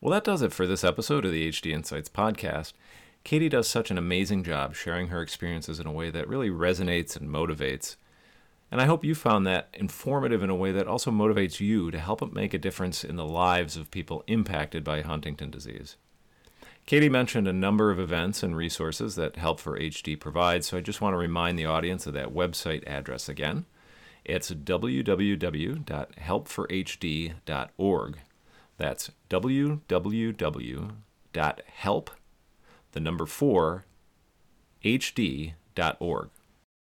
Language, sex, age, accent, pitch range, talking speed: English, male, 40-59, American, 80-105 Hz, 140 wpm